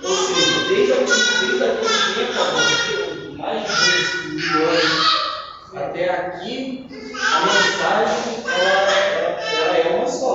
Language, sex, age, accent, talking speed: Portuguese, male, 20-39, Brazilian, 115 wpm